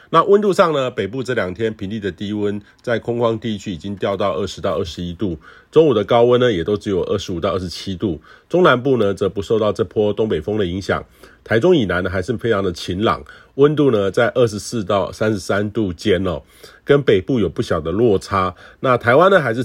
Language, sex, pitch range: Chinese, male, 95-120 Hz